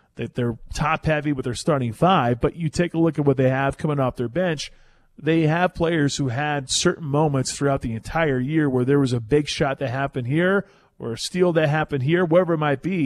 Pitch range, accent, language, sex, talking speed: 125-160 Hz, American, English, male, 230 wpm